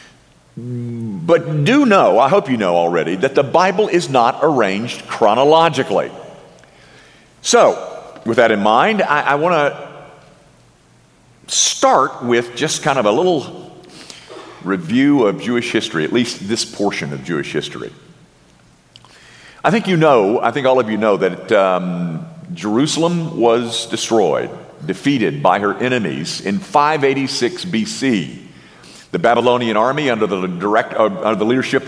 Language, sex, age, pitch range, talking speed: English, male, 50-69, 120-175 Hz, 135 wpm